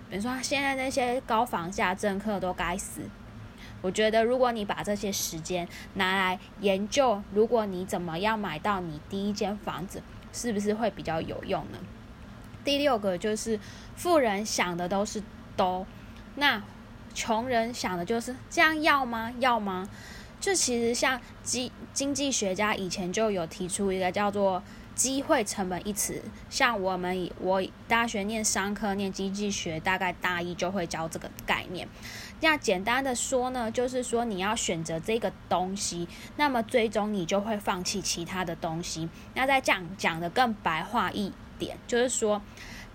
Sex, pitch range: female, 180-235 Hz